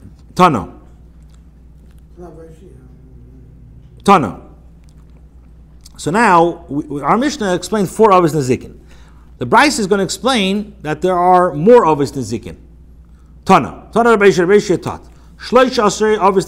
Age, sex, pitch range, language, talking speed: 50-69, male, 135-195 Hz, English, 120 wpm